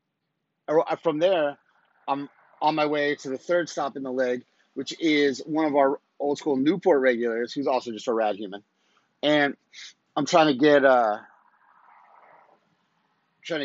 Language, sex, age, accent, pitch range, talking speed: English, male, 30-49, American, 135-165 Hz, 155 wpm